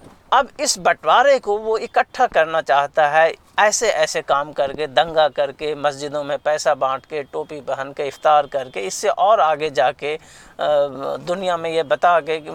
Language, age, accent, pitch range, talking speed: Hindi, 50-69, native, 145-195 Hz, 165 wpm